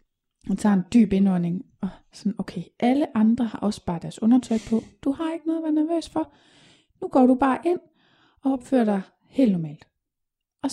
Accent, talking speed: native, 195 wpm